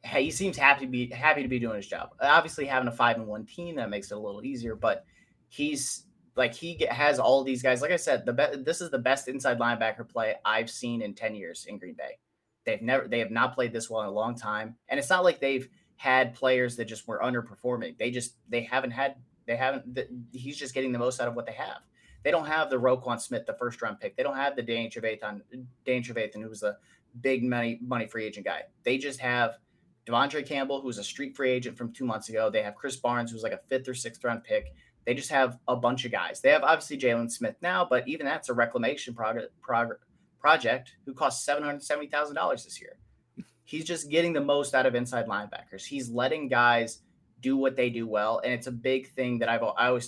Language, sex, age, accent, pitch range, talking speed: English, male, 30-49, American, 120-140 Hz, 235 wpm